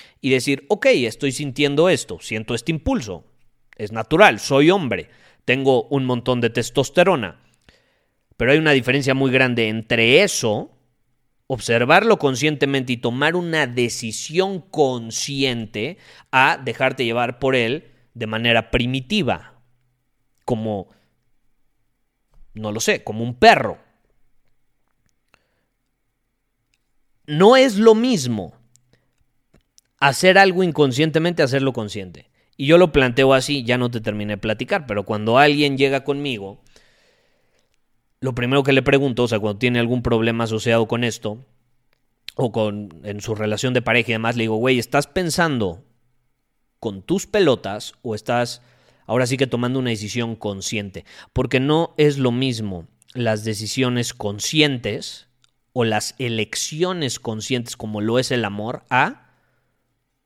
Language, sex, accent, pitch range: Spanish, male, Mexican, 115-135 Hz